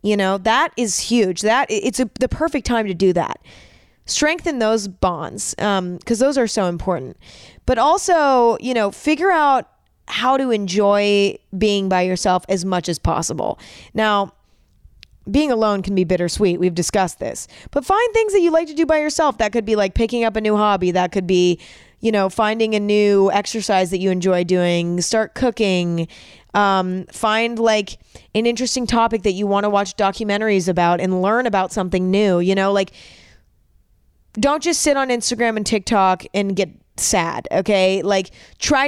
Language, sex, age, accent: English, female, 20-39, American